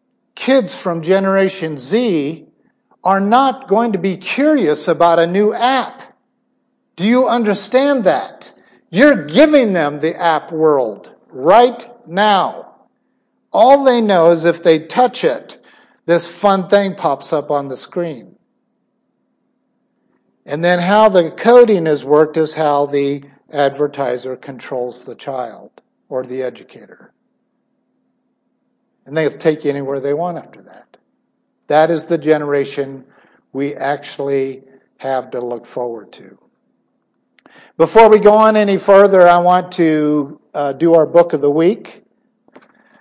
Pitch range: 150-230 Hz